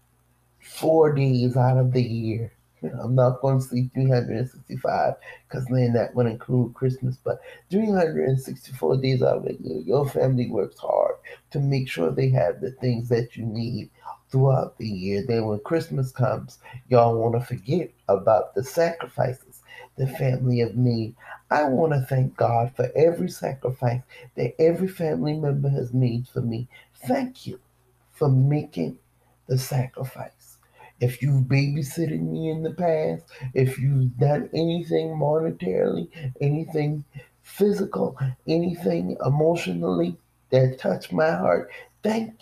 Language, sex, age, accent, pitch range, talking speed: English, male, 30-49, American, 125-150 Hz, 140 wpm